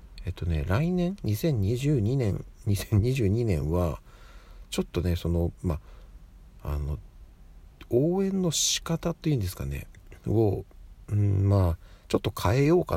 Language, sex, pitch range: Japanese, male, 85-105 Hz